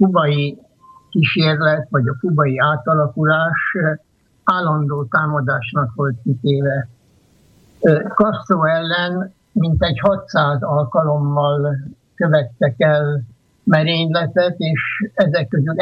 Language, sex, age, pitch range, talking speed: Slovak, male, 60-79, 145-180 Hz, 85 wpm